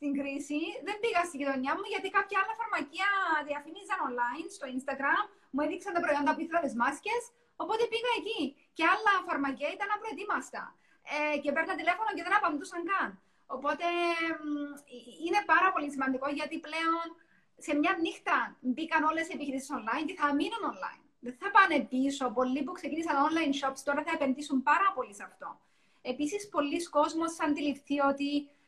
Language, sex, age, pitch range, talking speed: Greek, female, 20-39, 260-345 Hz, 165 wpm